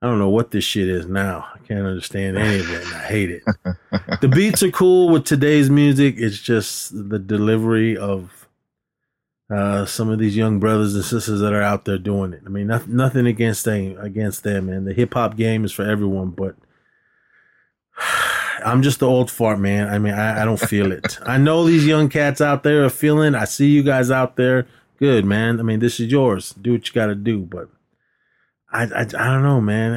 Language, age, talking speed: English, 30-49, 210 wpm